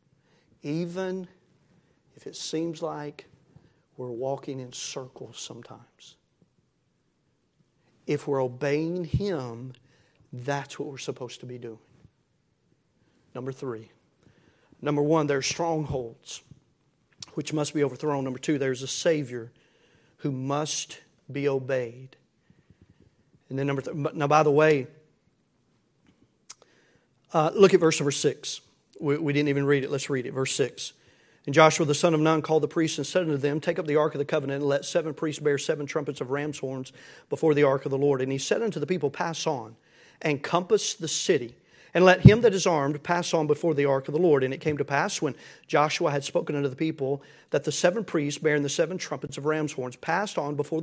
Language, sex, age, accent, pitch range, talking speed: English, male, 50-69, American, 140-160 Hz, 180 wpm